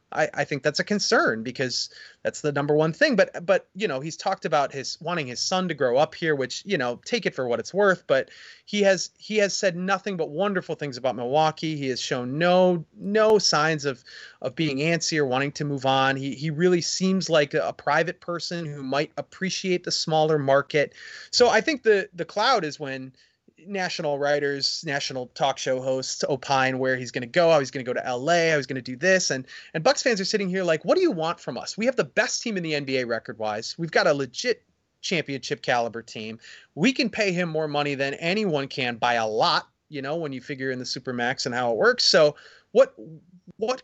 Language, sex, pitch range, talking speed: English, male, 135-190 Hz, 230 wpm